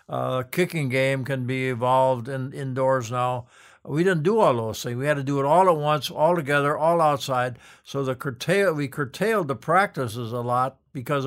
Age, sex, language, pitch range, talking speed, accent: 60-79, male, English, 125-150 Hz, 200 wpm, American